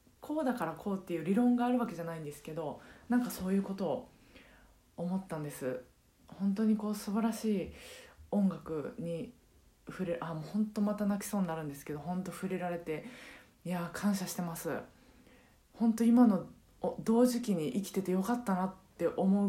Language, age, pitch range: Japanese, 20-39, 170-230 Hz